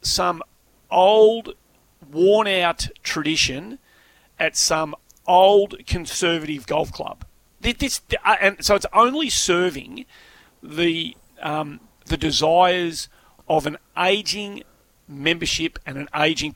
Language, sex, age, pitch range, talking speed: English, male, 40-59, 145-195 Hz, 100 wpm